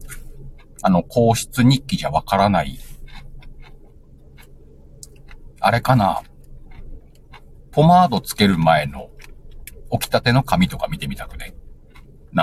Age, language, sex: 60-79, Japanese, male